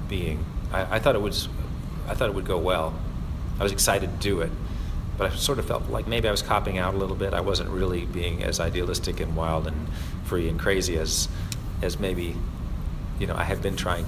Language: English